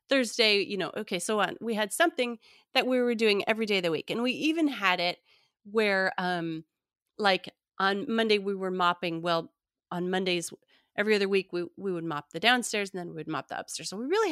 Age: 30-49